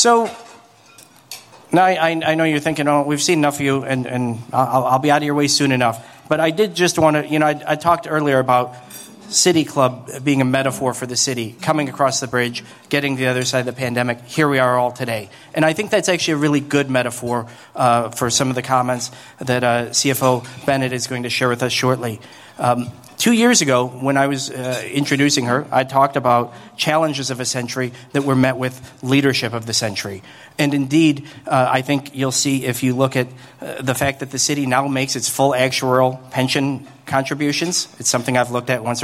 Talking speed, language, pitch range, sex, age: 215 wpm, English, 125-145 Hz, male, 40-59